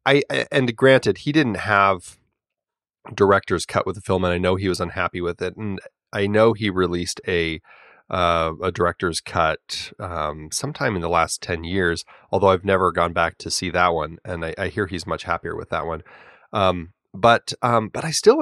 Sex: male